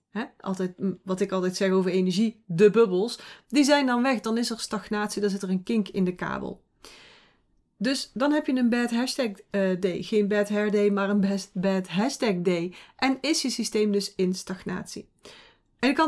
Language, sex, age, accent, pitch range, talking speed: Dutch, female, 40-59, Dutch, 200-265 Hz, 200 wpm